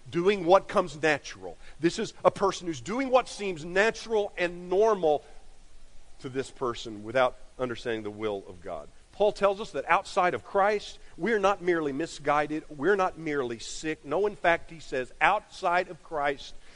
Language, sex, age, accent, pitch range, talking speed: English, male, 50-69, American, 140-210 Hz, 170 wpm